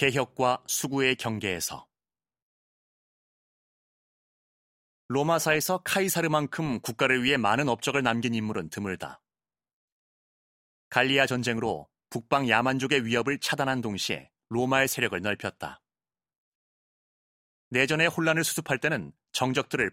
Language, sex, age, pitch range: Korean, male, 30-49, 110-135 Hz